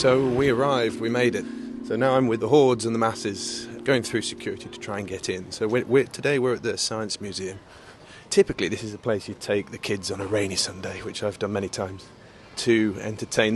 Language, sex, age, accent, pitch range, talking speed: English, male, 30-49, British, 105-125 Hz, 230 wpm